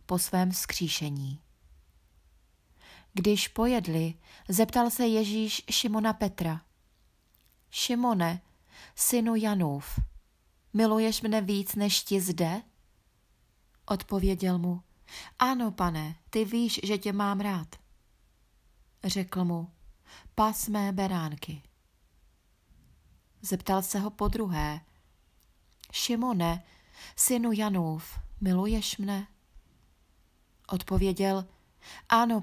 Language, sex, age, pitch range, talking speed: Czech, female, 30-49, 160-215 Hz, 85 wpm